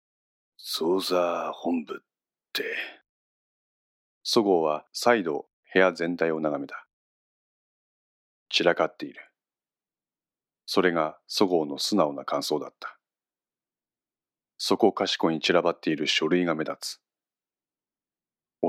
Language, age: Japanese, 40-59